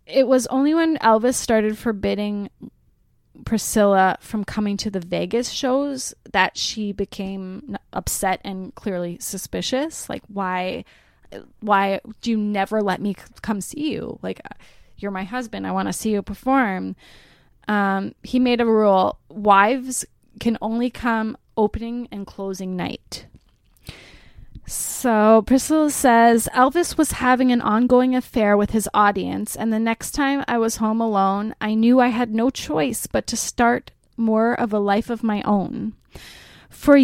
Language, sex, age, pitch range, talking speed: English, female, 10-29, 200-240 Hz, 150 wpm